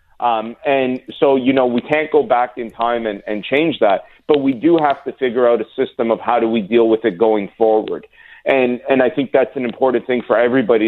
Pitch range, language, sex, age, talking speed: 115-135 Hz, English, male, 30-49, 235 wpm